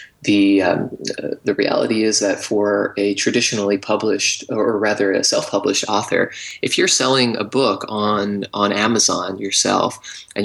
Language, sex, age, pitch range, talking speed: English, male, 20-39, 100-115 Hz, 155 wpm